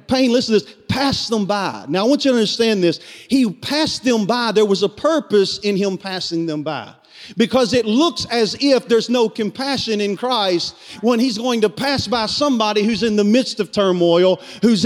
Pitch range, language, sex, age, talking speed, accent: 215-275 Hz, English, male, 40-59, 205 wpm, American